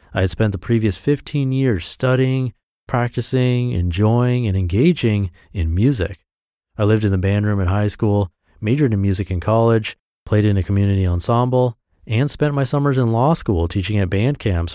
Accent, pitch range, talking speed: American, 95-125 Hz, 180 wpm